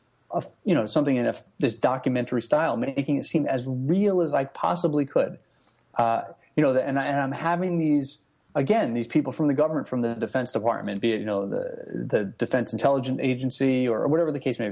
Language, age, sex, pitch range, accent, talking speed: English, 30-49, male, 115-150 Hz, American, 215 wpm